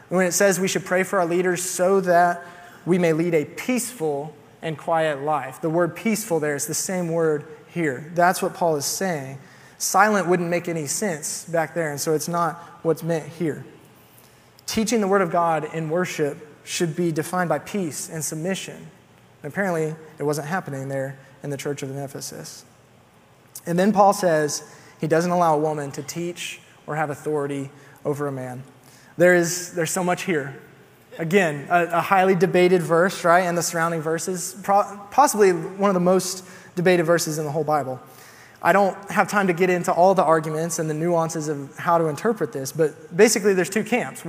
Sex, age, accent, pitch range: male, 20-39, American, 155-185 Hz